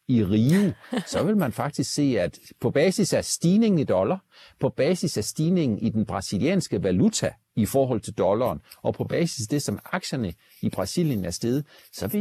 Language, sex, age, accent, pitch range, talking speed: Danish, male, 60-79, native, 105-150 Hz, 190 wpm